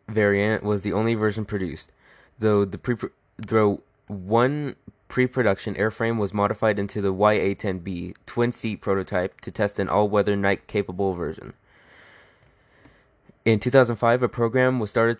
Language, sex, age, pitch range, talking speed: English, male, 20-39, 100-115 Hz, 125 wpm